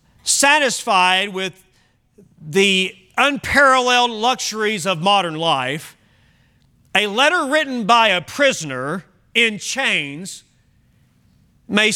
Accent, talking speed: American, 85 wpm